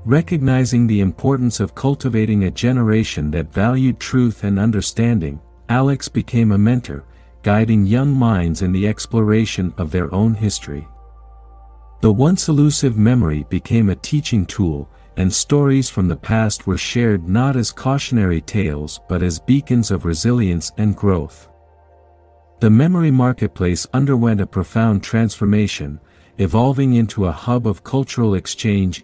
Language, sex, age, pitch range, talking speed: English, male, 50-69, 90-120 Hz, 135 wpm